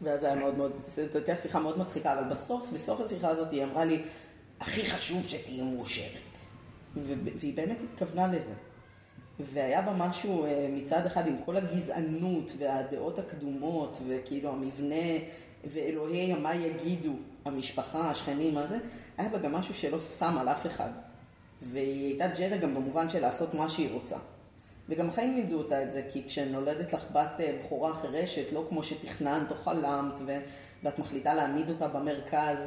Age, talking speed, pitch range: 30-49, 150 wpm, 135-160 Hz